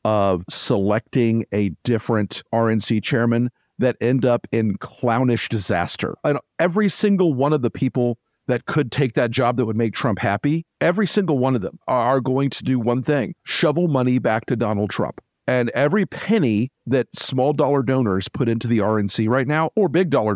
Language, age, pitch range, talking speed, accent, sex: English, 50-69, 115-155 Hz, 175 wpm, American, male